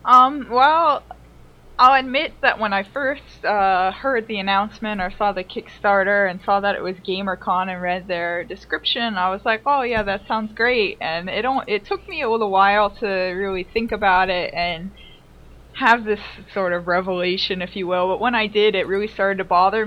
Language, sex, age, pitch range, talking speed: English, female, 20-39, 180-220 Hz, 200 wpm